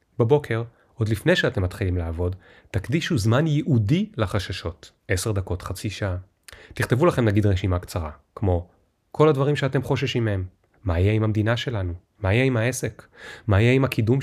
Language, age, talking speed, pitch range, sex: Hebrew, 30-49, 160 wpm, 95-130 Hz, male